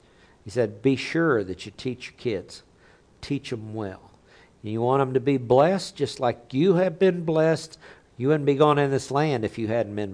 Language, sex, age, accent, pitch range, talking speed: English, male, 60-79, American, 120-150 Hz, 205 wpm